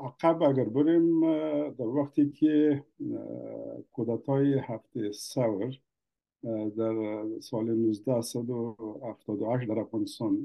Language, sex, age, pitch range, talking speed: English, male, 50-69, 120-170 Hz, 80 wpm